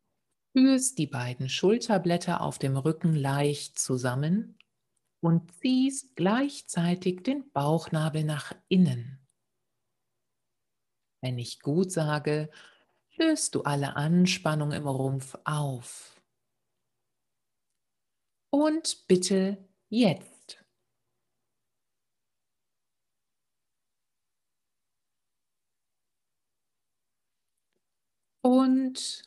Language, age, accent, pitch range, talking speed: German, 60-79, German, 140-185 Hz, 65 wpm